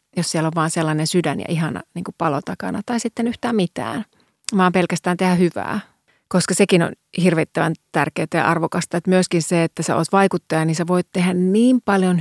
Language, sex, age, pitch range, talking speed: Finnish, female, 30-49, 165-190 Hz, 190 wpm